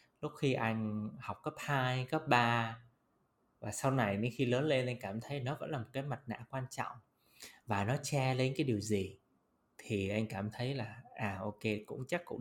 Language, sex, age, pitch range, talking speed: Vietnamese, male, 20-39, 105-130 Hz, 215 wpm